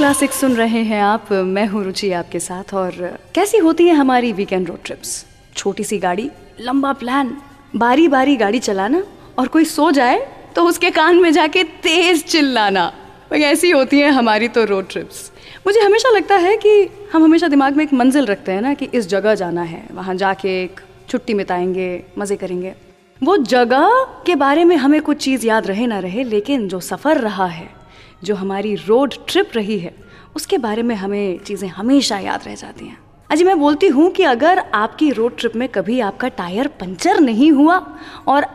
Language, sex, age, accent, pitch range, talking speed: English, female, 20-39, Indian, 205-325 Hz, 145 wpm